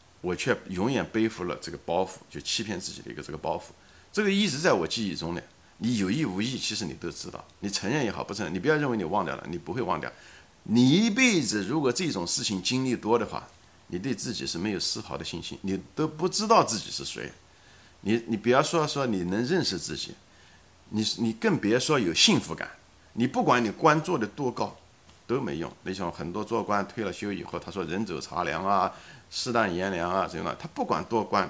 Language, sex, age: Chinese, male, 50-69